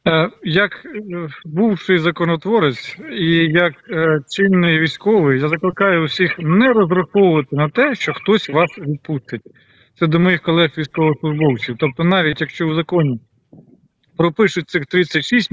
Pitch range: 155-200 Hz